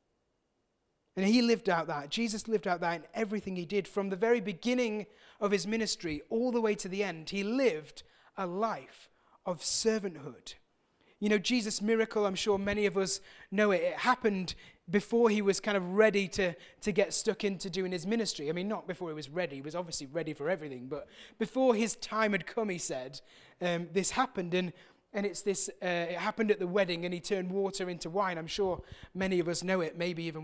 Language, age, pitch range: English, 30-49, 180-230 Hz